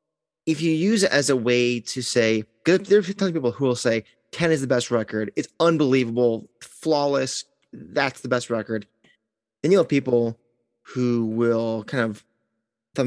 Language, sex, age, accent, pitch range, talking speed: English, male, 30-49, American, 115-150 Hz, 180 wpm